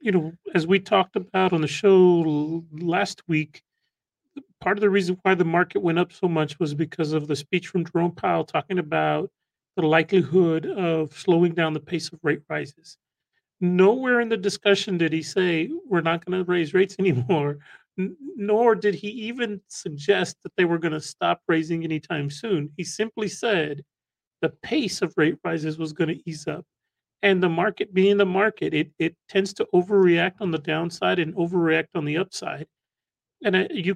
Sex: male